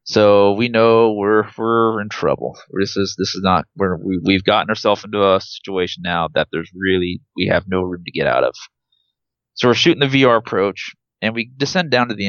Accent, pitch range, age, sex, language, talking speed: American, 100-120 Hz, 30-49, male, English, 215 wpm